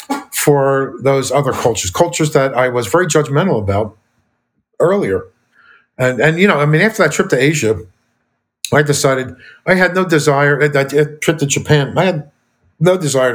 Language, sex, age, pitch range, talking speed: English, male, 50-69, 120-155 Hz, 165 wpm